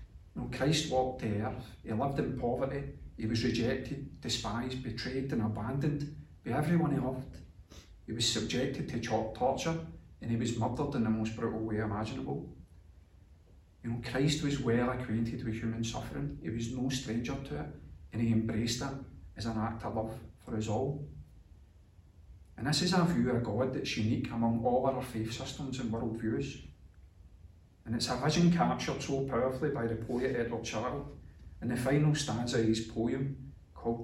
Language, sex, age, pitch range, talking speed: English, male, 40-59, 105-130 Hz, 180 wpm